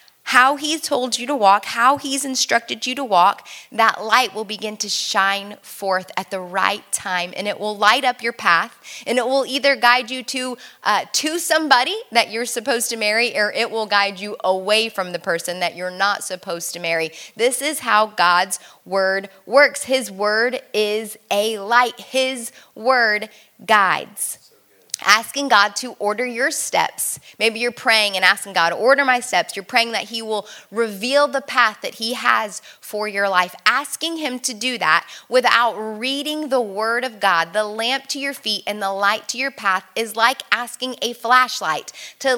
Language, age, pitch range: English, 20-39, 200-255 Hz